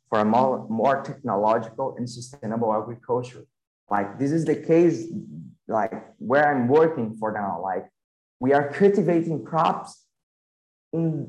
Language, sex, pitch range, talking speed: English, male, 125-165 Hz, 135 wpm